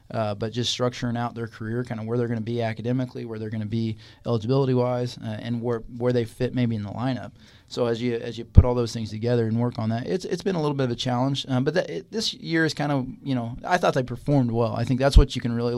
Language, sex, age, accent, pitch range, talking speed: English, male, 20-39, American, 110-125 Hz, 295 wpm